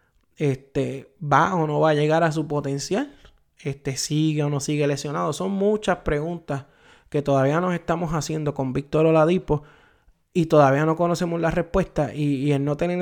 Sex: male